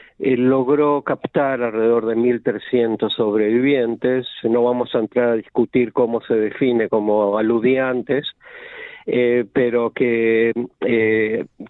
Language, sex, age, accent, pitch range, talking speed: Spanish, male, 50-69, Argentinian, 115-145 Hz, 110 wpm